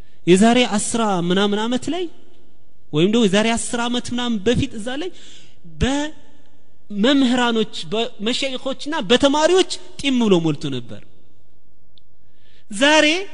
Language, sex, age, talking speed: Amharic, male, 30-49, 100 wpm